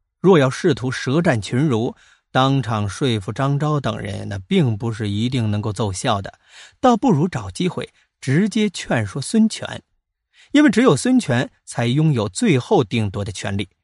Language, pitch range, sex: Chinese, 100-155 Hz, male